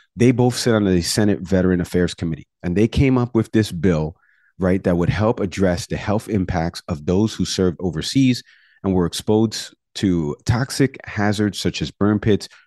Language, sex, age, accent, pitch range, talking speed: English, male, 40-59, American, 90-110 Hz, 185 wpm